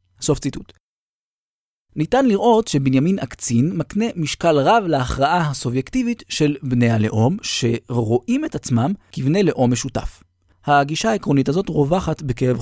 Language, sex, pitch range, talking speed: Hebrew, male, 115-165 Hz, 120 wpm